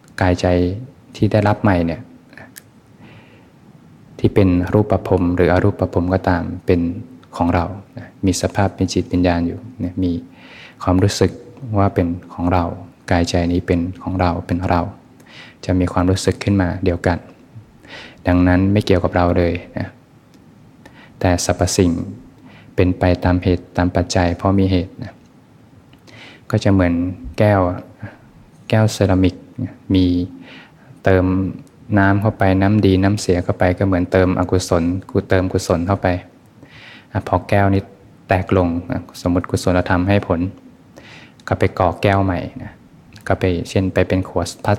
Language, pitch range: Thai, 90-100 Hz